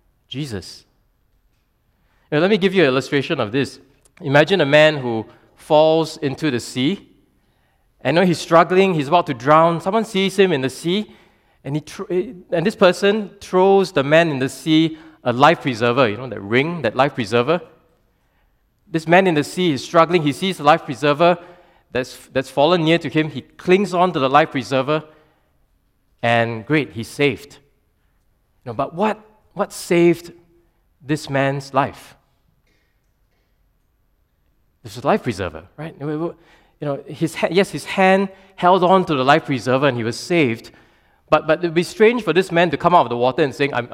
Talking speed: 180 wpm